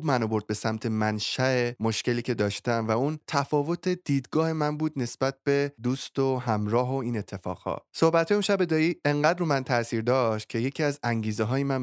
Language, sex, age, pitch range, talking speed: Persian, male, 20-39, 110-145 Hz, 180 wpm